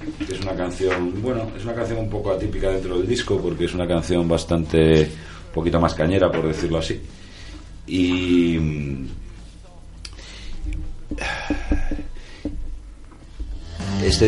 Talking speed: 115 wpm